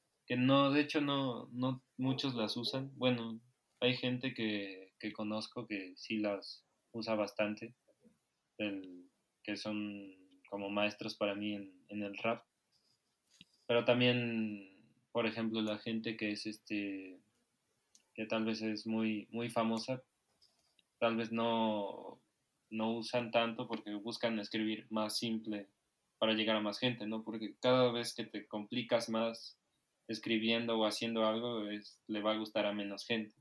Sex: male